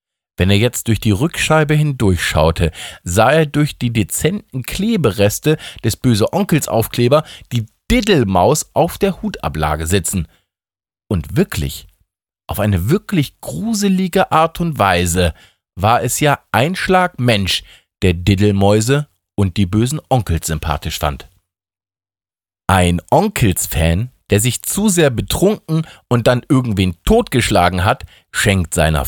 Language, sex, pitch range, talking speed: German, male, 90-145 Hz, 125 wpm